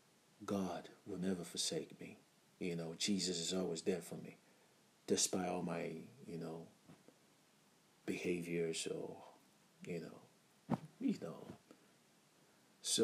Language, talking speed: English, 115 wpm